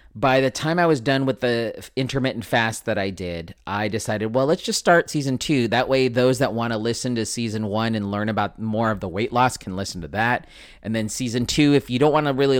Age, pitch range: 30-49, 105-130 Hz